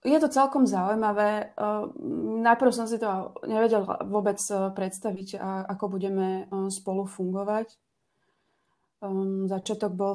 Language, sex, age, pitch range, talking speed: Slovak, female, 30-49, 190-210 Hz, 100 wpm